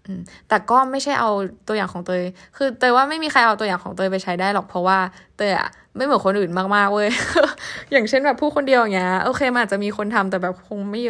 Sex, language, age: female, Thai, 10-29